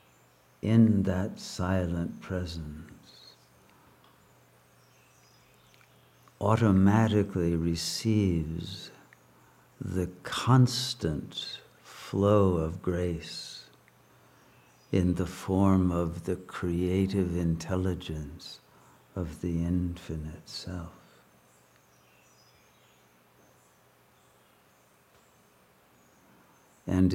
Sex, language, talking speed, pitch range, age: male, English, 50 wpm, 75-95 Hz, 60-79